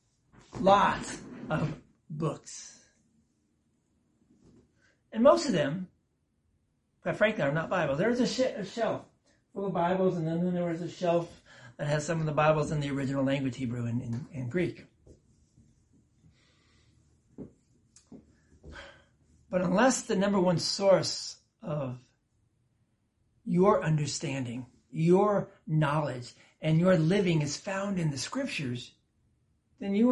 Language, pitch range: English, 135-195 Hz